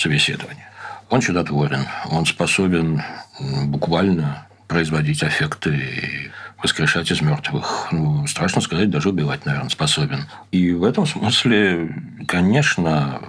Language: Russian